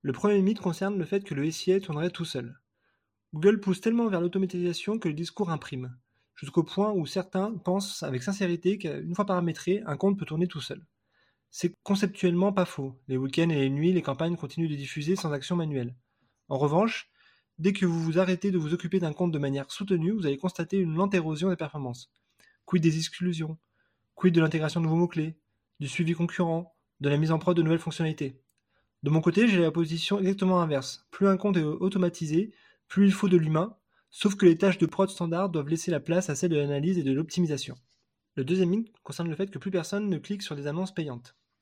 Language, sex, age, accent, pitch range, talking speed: French, male, 20-39, French, 150-190 Hz, 215 wpm